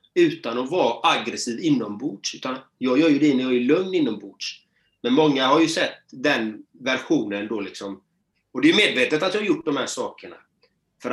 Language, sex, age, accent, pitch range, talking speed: Swedish, male, 30-49, native, 115-165 Hz, 200 wpm